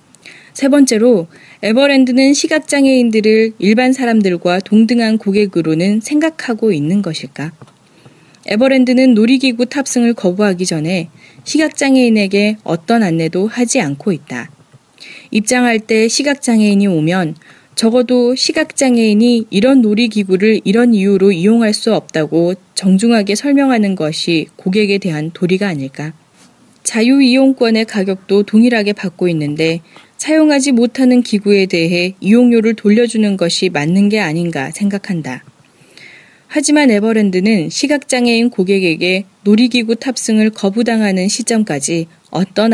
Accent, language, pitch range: native, Korean, 180-240 Hz